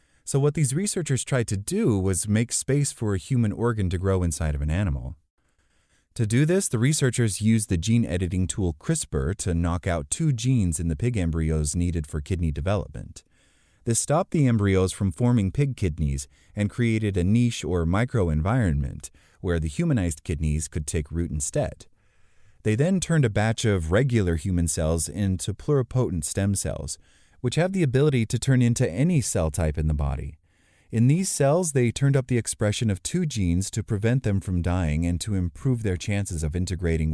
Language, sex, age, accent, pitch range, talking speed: English, male, 30-49, American, 85-120 Hz, 185 wpm